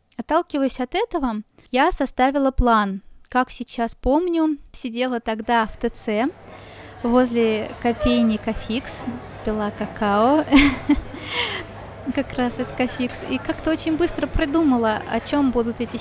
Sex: female